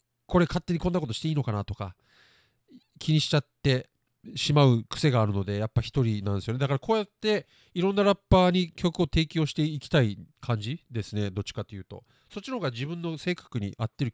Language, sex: Japanese, male